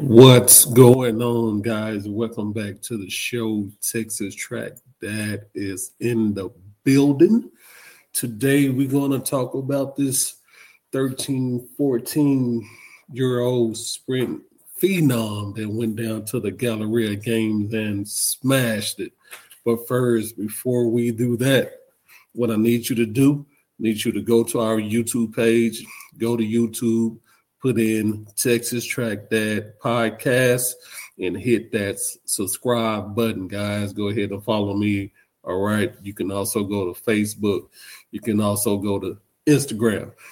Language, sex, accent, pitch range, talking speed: English, male, American, 105-125 Hz, 140 wpm